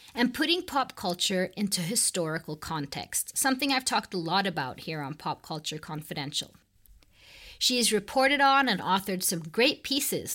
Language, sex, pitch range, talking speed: English, female, 175-240 Hz, 155 wpm